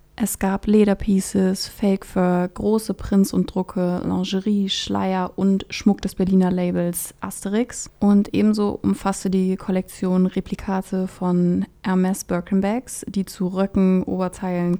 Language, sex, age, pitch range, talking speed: German, female, 20-39, 180-200 Hz, 120 wpm